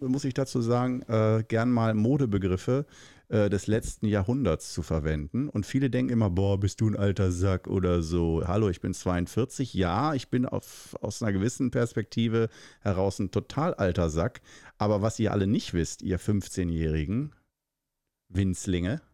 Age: 50-69